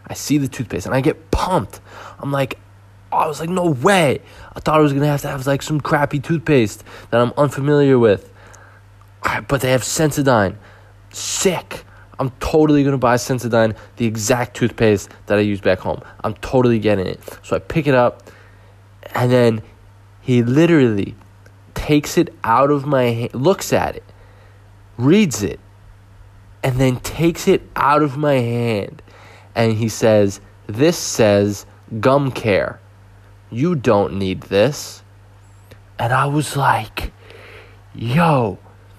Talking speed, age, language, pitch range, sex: 155 wpm, 20-39, English, 100-140 Hz, male